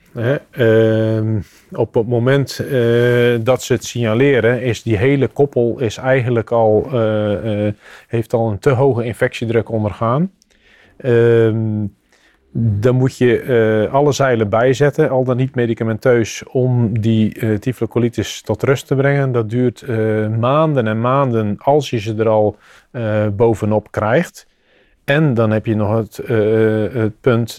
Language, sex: Dutch, male